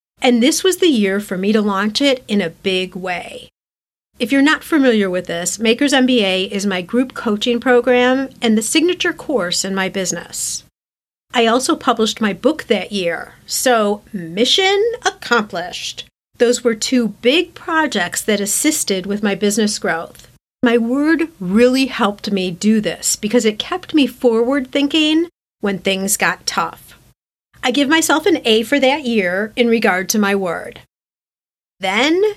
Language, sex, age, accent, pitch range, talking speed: English, female, 40-59, American, 200-270 Hz, 160 wpm